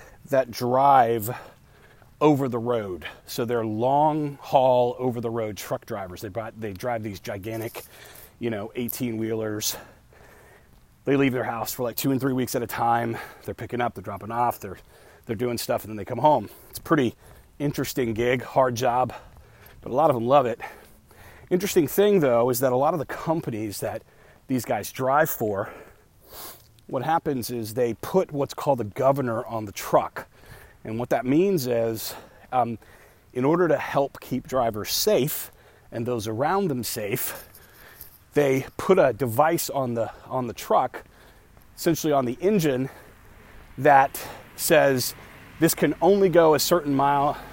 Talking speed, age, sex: 170 wpm, 30-49, male